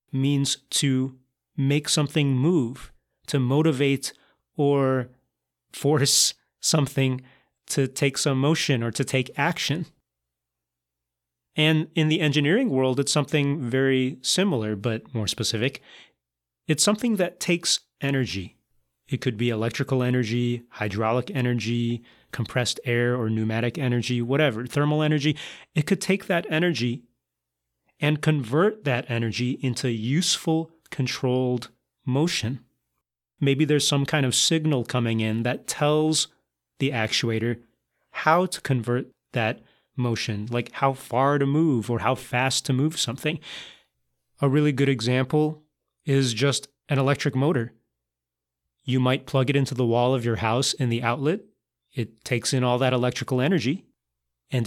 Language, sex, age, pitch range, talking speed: English, male, 30-49, 120-145 Hz, 135 wpm